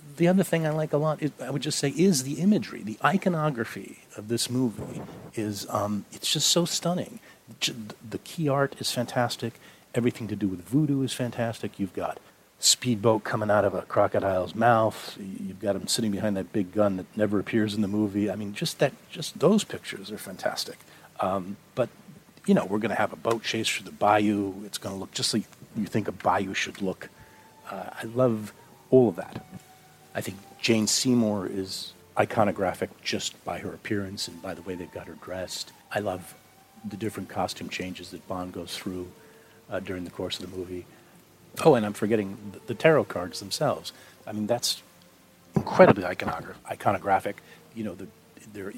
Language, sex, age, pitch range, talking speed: English, male, 40-59, 95-130 Hz, 190 wpm